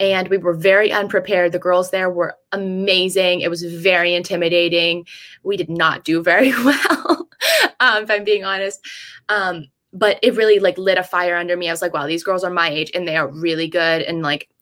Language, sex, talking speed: English, female, 210 wpm